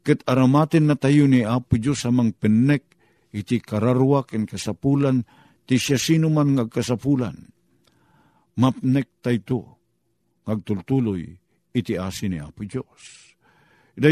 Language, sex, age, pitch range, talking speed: Filipino, male, 50-69, 115-145 Hz, 105 wpm